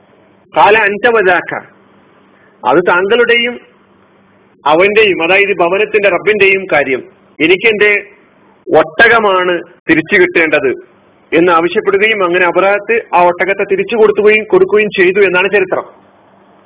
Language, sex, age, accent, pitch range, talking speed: Malayalam, male, 40-59, native, 195-320 Hz, 85 wpm